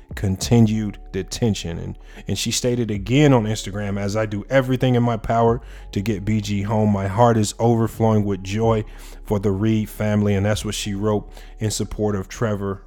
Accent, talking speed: American, 180 wpm